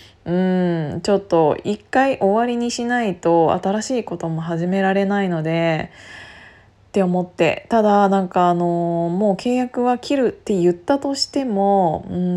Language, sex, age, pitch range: Japanese, female, 20-39, 175-205 Hz